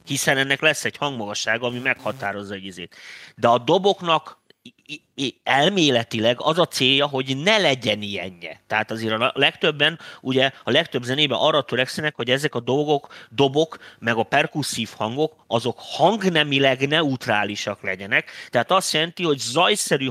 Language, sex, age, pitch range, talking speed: Hungarian, male, 30-49, 120-155 Hz, 140 wpm